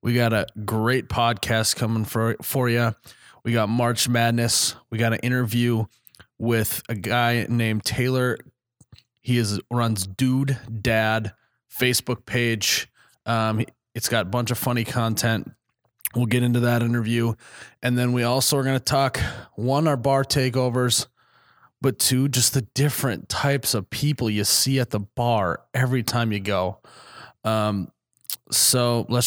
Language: English